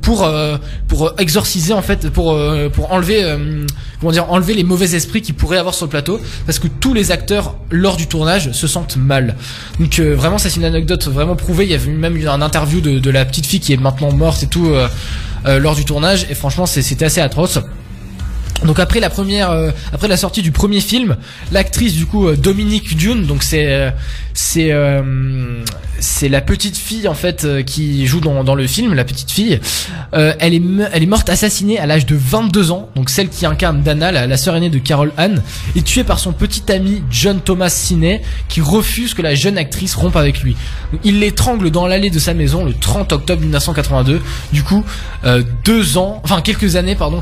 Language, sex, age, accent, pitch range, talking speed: French, male, 20-39, French, 140-185 Hz, 220 wpm